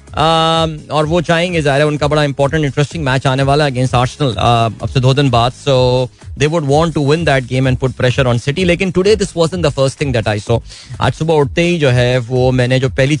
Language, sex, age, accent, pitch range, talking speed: Hindi, male, 20-39, native, 125-155 Hz, 180 wpm